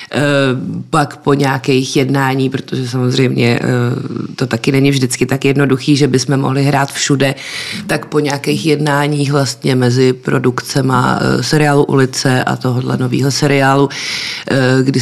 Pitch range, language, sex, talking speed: 135-165 Hz, Czech, female, 125 wpm